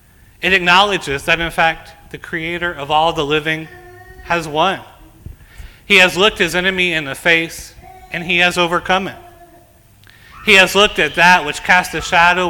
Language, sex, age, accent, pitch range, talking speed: English, male, 30-49, American, 120-175 Hz, 170 wpm